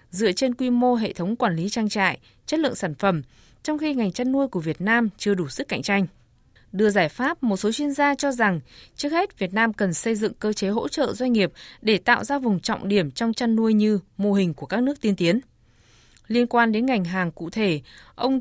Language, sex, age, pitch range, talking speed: Vietnamese, female, 20-39, 190-250 Hz, 240 wpm